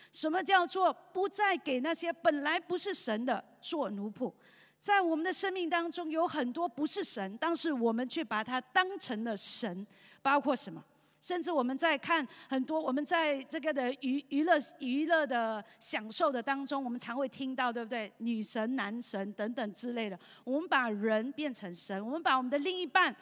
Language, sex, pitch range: Chinese, female, 220-310 Hz